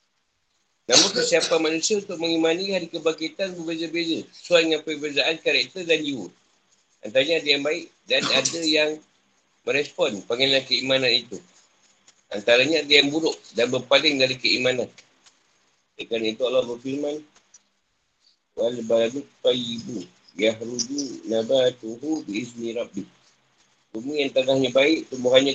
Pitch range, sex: 125-165 Hz, male